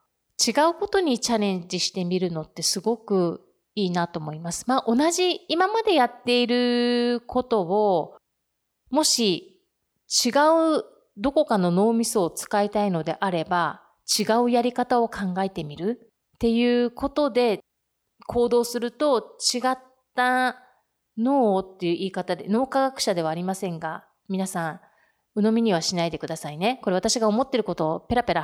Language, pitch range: Japanese, 185-255 Hz